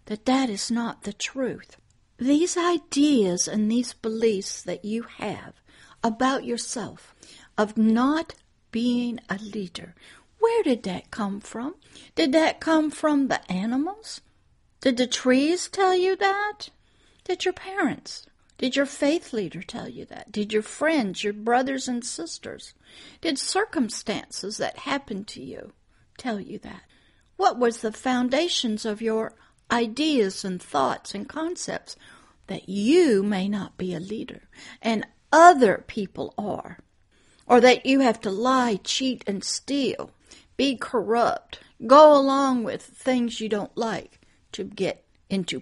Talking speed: 140 wpm